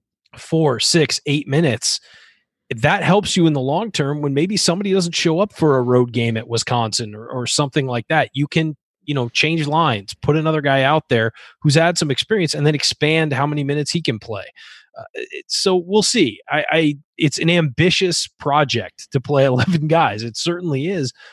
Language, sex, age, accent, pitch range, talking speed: English, male, 30-49, American, 130-165 Hz, 195 wpm